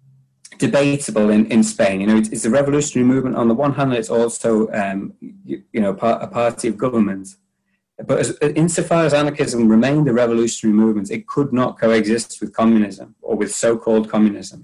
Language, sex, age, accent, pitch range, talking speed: English, male, 30-49, British, 105-120 Hz, 170 wpm